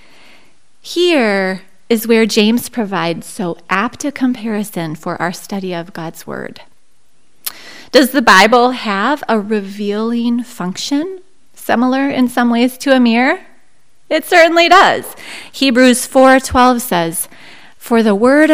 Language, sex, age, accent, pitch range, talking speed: English, female, 30-49, American, 200-270 Hz, 125 wpm